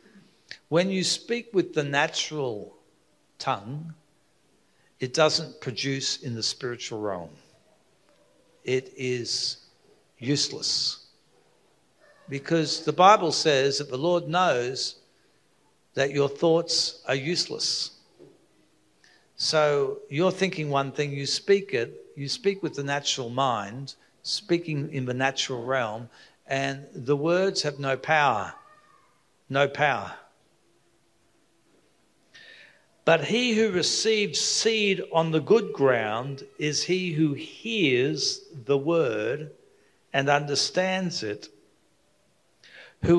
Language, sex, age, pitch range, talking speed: English, male, 60-79, 135-195 Hz, 105 wpm